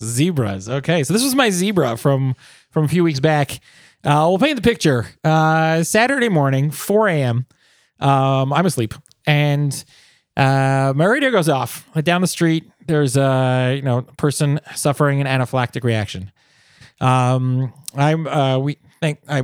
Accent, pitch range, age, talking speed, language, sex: American, 130-170 Hz, 30-49, 155 wpm, English, male